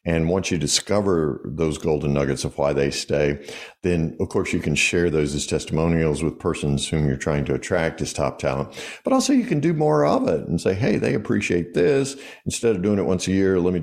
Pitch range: 75-100 Hz